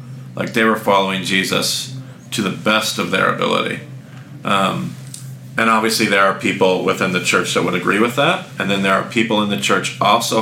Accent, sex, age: American, male, 40-59